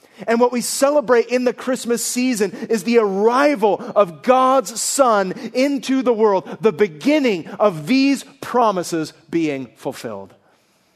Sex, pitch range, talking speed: male, 145-225 Hz, 130 wpm